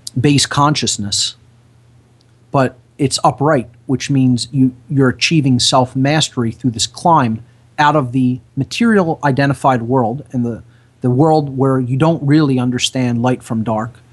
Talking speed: 140 wpm